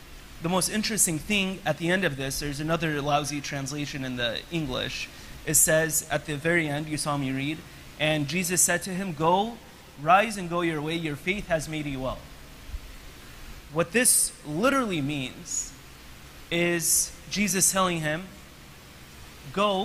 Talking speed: 155 wpm